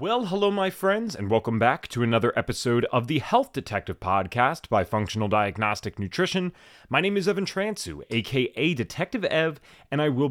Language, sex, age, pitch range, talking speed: English, male, 30-49, 105-175 Hz, 175 wpm